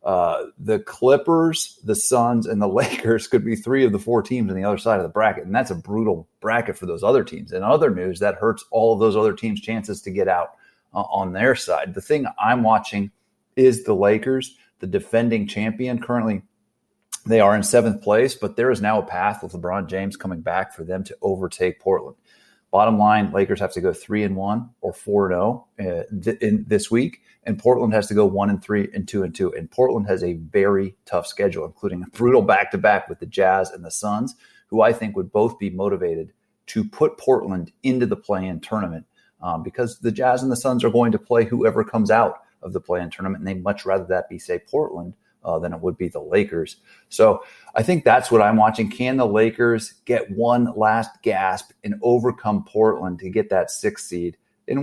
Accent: American